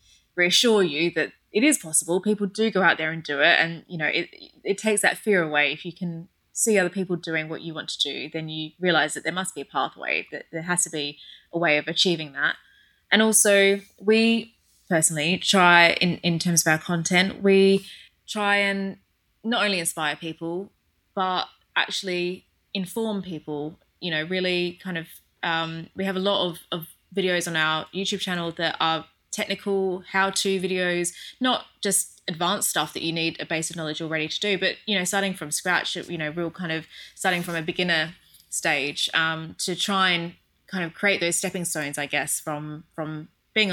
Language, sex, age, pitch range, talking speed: English, female, 20-39, 160-190 Hz, 195 wpm